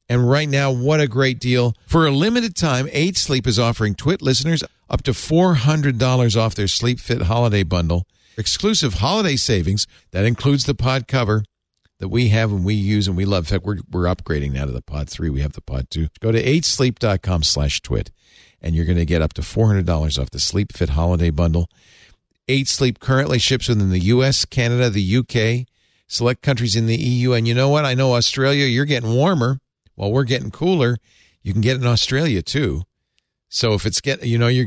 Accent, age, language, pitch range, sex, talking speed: American, 50-69, English, 95-130 Hz, male, 205 wpm